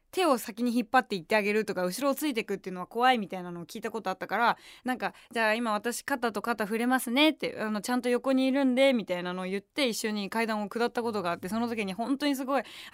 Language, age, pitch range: Japanese, 20-39, 210-275 Hz